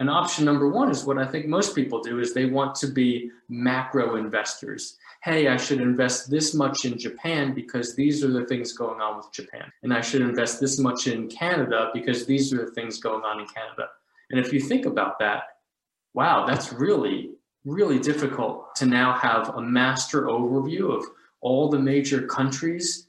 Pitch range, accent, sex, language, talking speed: 115-140 Hz, American, male, English, 190 wpm